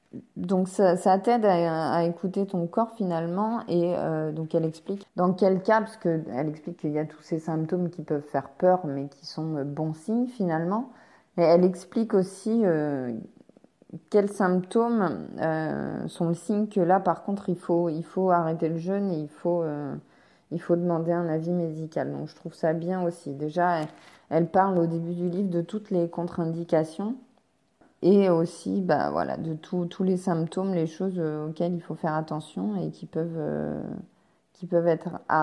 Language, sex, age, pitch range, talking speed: French, female, 20-39, 160-185 Hz, 185 wpm